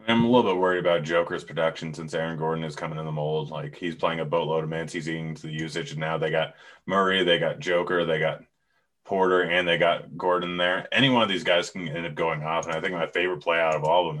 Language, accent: English, American